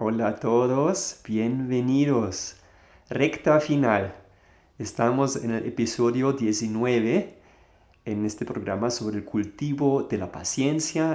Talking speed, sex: 110 wpm, male